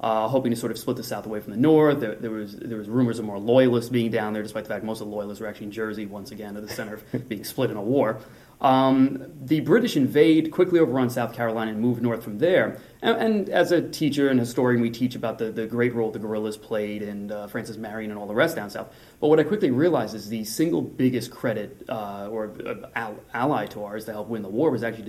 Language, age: English, 30-49